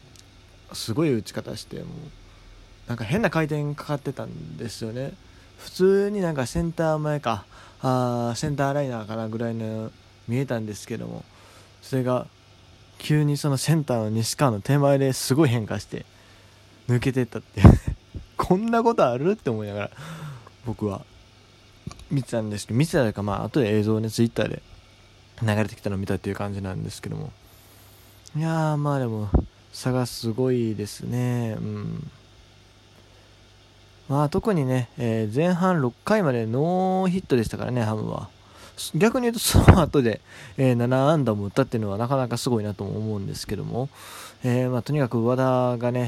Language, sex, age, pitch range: Japanese, male, 20-39, 105-140 Hz